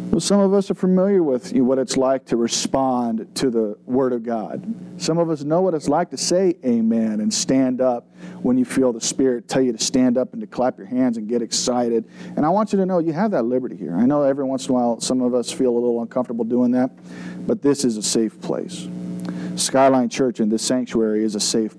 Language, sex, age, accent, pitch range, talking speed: English, male, 40-59, American, 125-185 Hz, 245 wpm